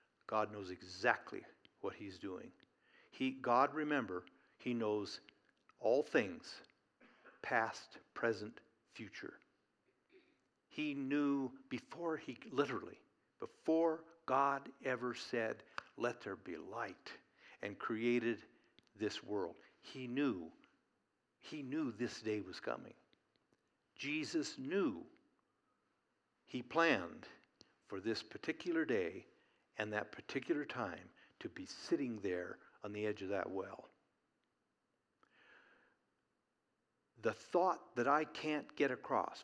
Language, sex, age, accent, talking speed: English, male, 60-79, American, 105 wpm